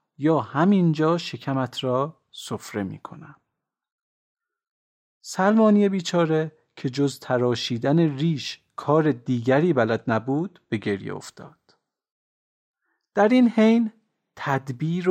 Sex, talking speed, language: male, 95 wpm, Persian